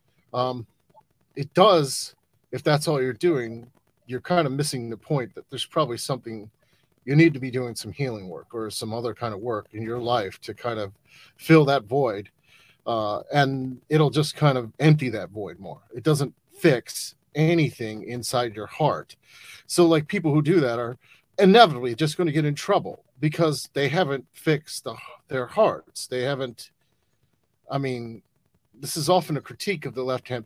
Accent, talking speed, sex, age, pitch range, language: American, 175 wpm, male, 30-49, 125-160 Hz, English